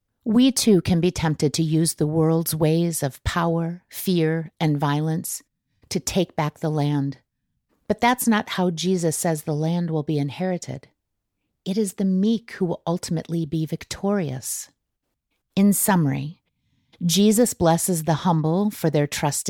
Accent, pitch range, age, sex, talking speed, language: American, 155-195 Hz, 50-69, female, 150 wpm, English